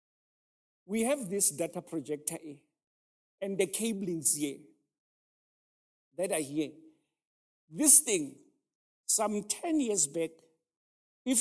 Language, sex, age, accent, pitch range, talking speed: English, male, 60-79, South African, 175-260 Hz, 100 wpm